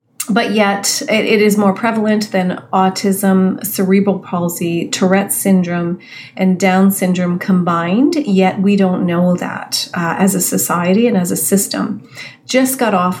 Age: 40-59